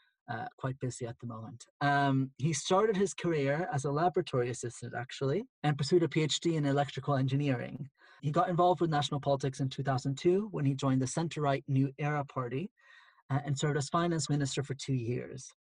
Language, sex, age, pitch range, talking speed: English, male, 30-49, 135-160 Hz, 185 wpm